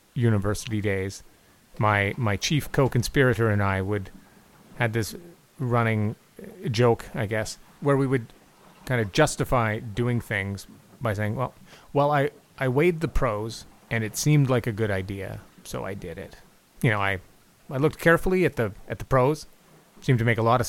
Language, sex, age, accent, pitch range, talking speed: English, male, 30-49, American, 105-135 Hz, 175 wpm